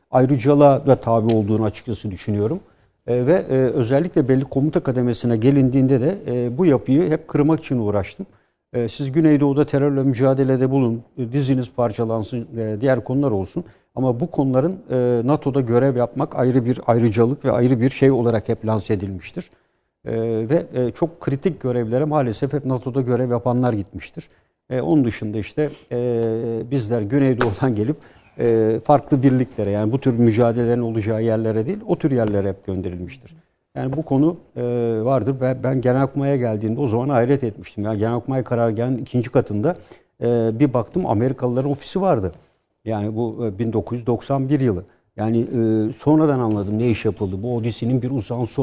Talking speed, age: 140 wpm, 60-79